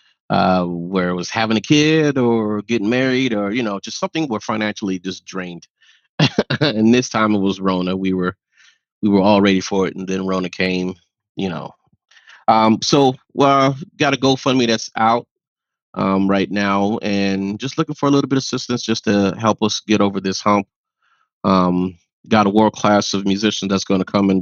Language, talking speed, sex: English, 190 wpm, male